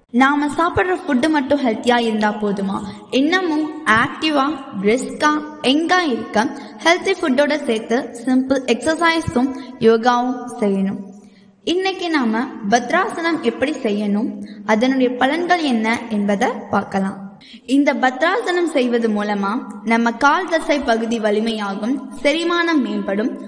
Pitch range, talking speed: 225-290 Hz, 55 wpm